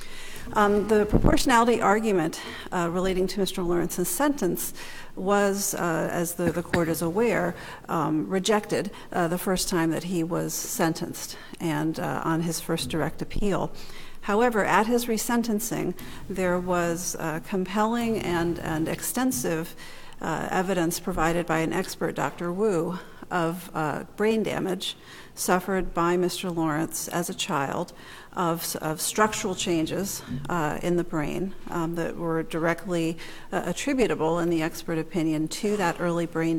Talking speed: 145 wpm